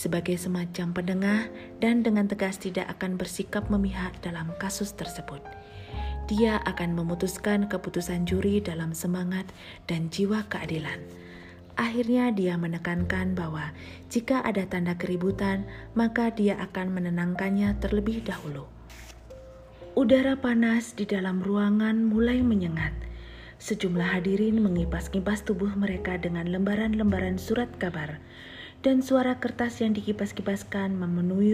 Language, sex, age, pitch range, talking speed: Indonesian, female, 40-59, 175-220 Hz, 110 wpm